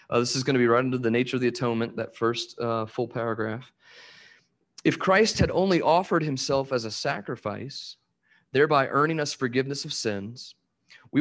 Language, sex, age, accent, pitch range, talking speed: English, male, 30-49, American, 120-160 Hz, 180 wpm